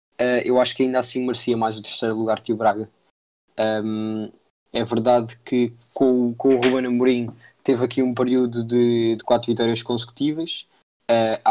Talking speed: 165 wpm